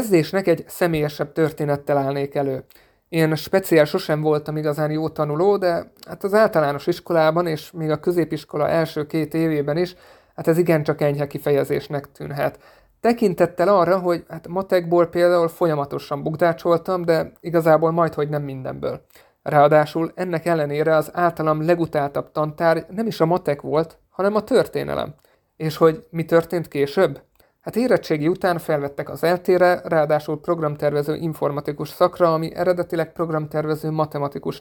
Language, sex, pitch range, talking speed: Hungarian, male, 150-175 Hz, 135 wpm